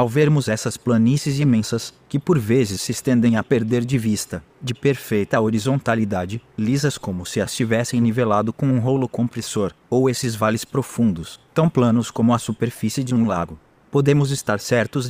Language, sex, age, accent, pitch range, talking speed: Portuguese, male, 20-39, Brazilian, 110-125 Hz, 165 wpm